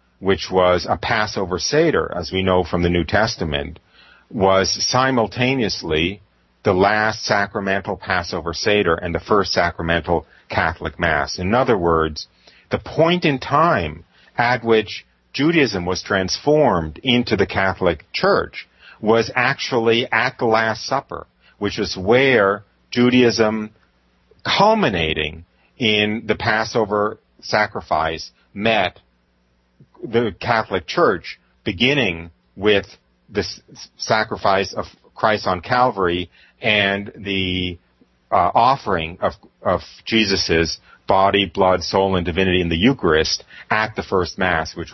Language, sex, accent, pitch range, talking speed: English, male, American, 85-110 Hz, 120 wpm